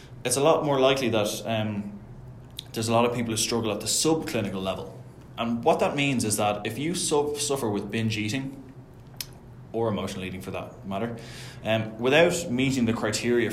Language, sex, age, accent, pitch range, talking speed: English, male, 20-39, Irish, 105-125 Hz, 180 wpm